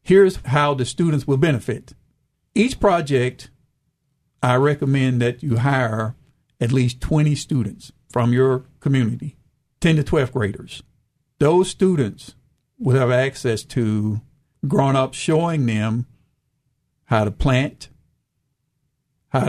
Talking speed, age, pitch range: 115 wpm, 50-69, 125-145 Hz